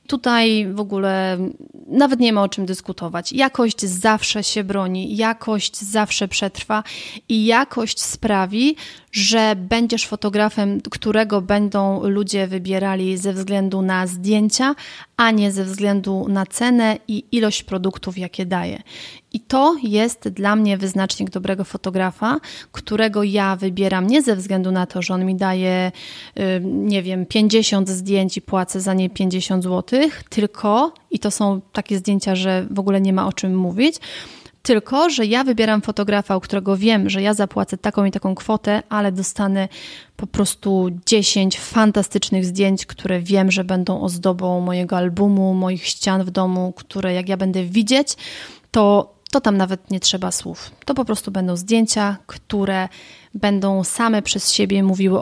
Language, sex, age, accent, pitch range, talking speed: Polish, female, 30-49, native, 190-220 Hz, 155 wpm